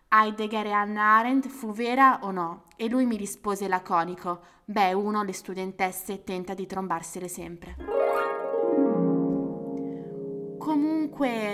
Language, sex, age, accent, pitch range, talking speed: Italian, female, 20-39, native, 185-235 Hz, 115 wpm